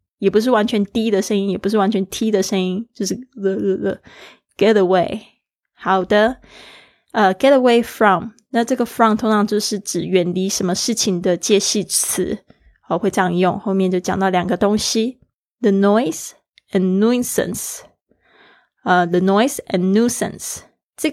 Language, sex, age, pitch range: Chinese, female, 20-39, 195-230 Hz